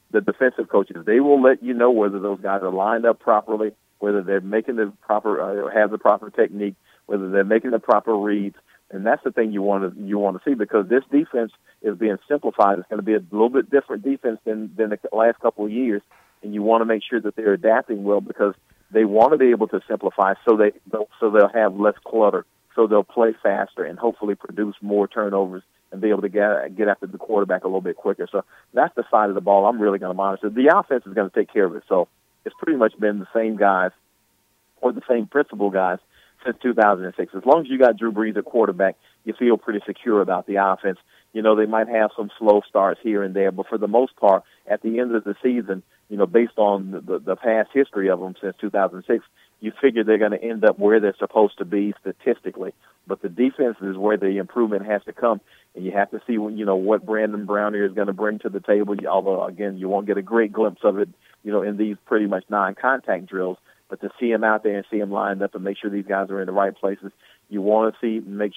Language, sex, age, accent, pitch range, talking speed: English, male, 50-69, American, 100-110 Hz, 250 wpm